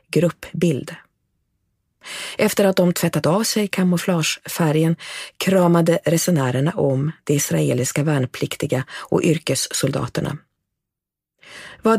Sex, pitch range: female, 145-185 Hz